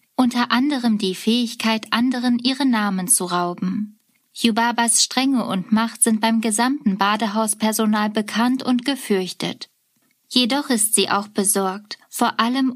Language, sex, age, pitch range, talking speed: German, female, 20-39, 195-240 Hz, 125 wpm